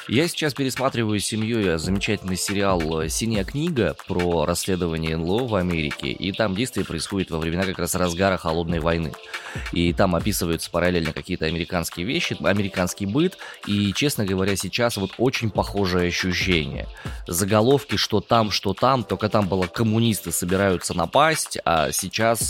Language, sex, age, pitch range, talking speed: Russian, male, 20-39, 90-115 Hz, 145 wpm